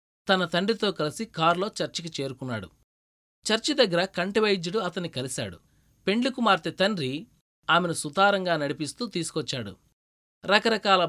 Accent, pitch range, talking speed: native, 140-195 Hz, 90 wpm